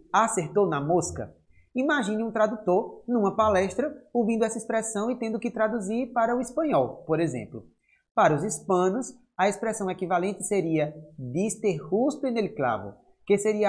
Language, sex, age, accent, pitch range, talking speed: Portuguese, male, 20-39, Brazilian, 160-225 Hz, 150 wpm